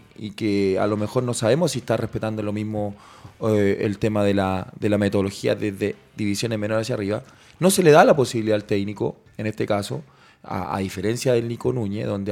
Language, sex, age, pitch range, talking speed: Spanish, male, 20-39, 105-135 Hz, 210 wpm